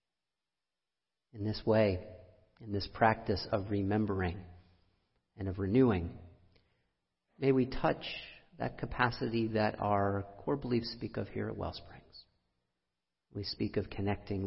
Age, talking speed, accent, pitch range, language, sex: 40-59, 120 wpm, American, 90-115 Hz, English, male